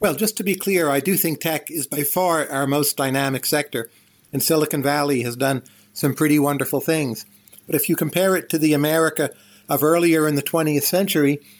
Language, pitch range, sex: English, 135-160 Hz, male